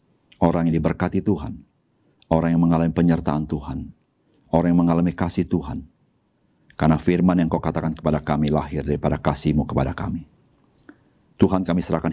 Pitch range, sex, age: 75-85 Hz, male, 50-69